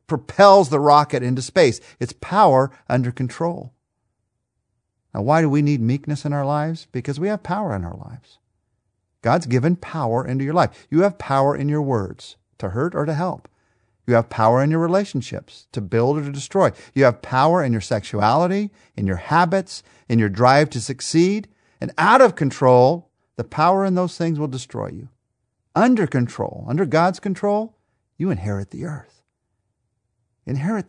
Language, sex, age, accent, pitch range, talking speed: English, male, 50-69, American, 115-165 Hz, 175 wpm